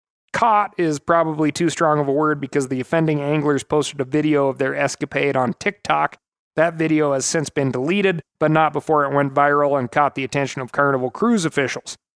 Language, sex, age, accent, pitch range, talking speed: English, male, 30-49, American, 140-180 Hz, 195 wpm